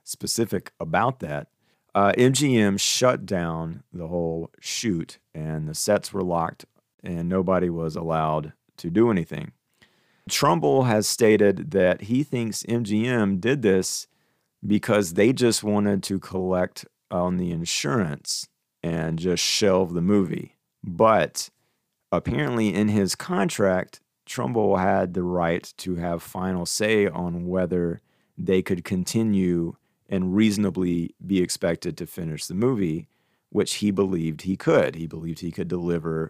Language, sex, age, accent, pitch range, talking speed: English, male, 40-59, American, 85-105 Hz, 135 wpm